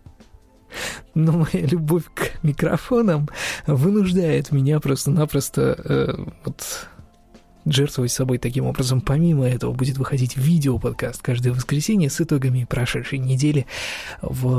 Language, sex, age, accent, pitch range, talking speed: Russian, male, 20-39, native, 125-155 Hz, 105 wpm